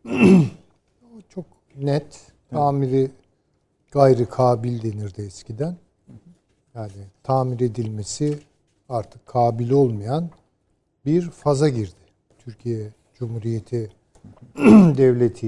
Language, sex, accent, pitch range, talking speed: Turkish, male, native, 105-135 Hz, 80 wpm